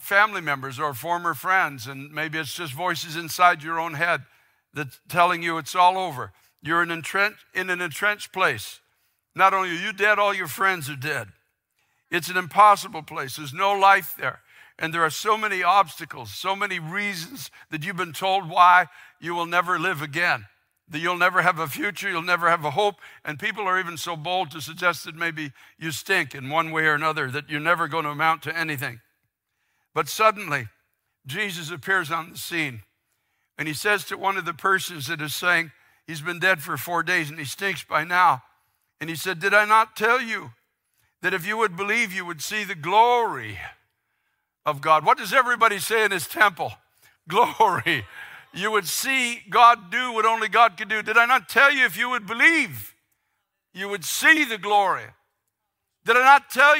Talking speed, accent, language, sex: 195 wpm, American, English, male